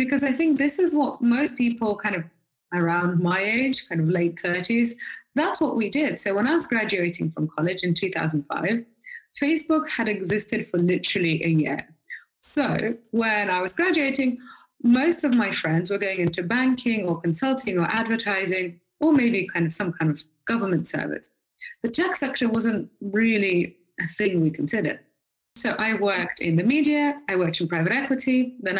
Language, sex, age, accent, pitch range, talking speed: English, female, 20-39, British, 180-265 Hz, 175 wpm